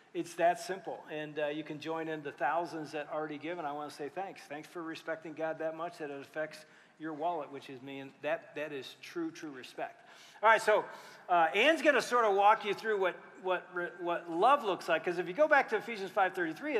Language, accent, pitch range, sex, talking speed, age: English, American, 170-230 Hz, male, 240 wpm, 40-59